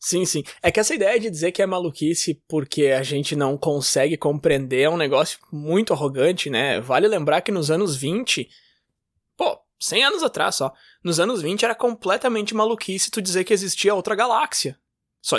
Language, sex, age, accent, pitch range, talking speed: Portuguese, male, 20-39, Brazilian, 155-210 Hz, 185 wpm